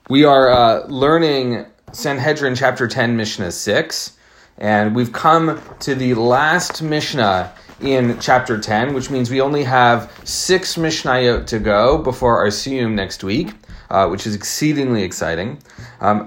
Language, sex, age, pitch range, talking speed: English, male, 30-49, 120-150 Hz, 145 wpm